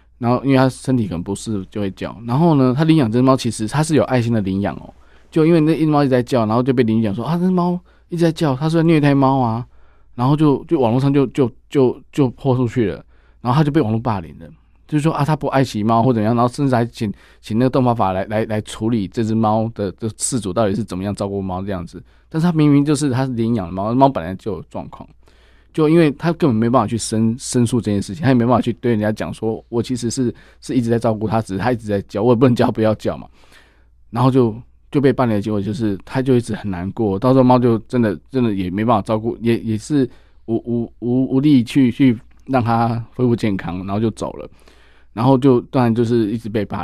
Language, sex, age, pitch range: Chinese, male, 20-39, 105-130 Hz